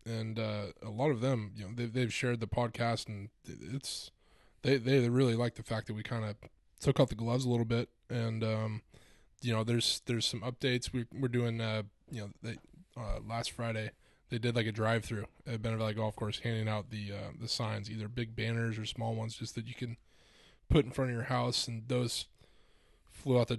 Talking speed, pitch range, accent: 220 wpm, 110-125 Hz, American